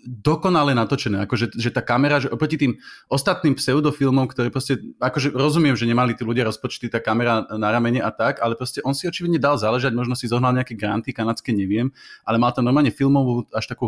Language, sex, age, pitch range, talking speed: Slovak, male, 30-49, 115-140 Hz, 205 wpm